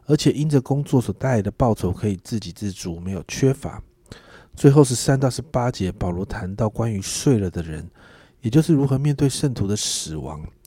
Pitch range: 100-140 Hz